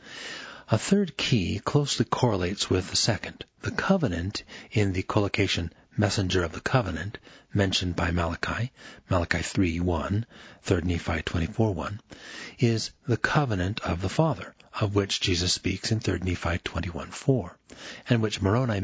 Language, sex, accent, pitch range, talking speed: English, male, American, 90-115 Hz, 135 wpm